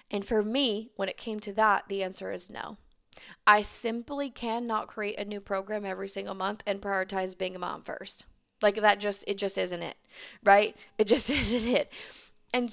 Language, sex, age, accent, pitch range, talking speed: English, female, 20-39, American, 200-230 Hz, 195 wpm